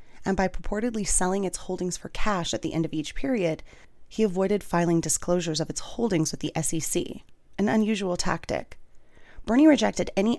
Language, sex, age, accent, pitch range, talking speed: English, female, 30-49, American, 160-195 Hz, 175 wpm